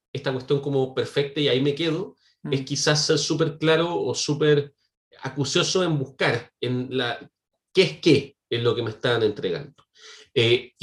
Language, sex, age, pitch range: Spanish, male, 30-49, 120-160 Hz